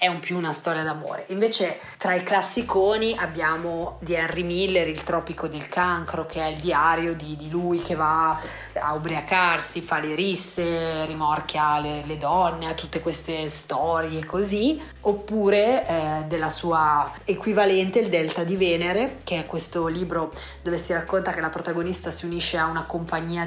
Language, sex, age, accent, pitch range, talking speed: Italian, female, 20-39, native, 160-180 Hz, 165 wpm